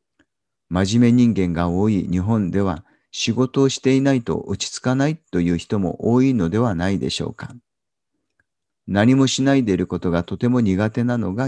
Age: 50-69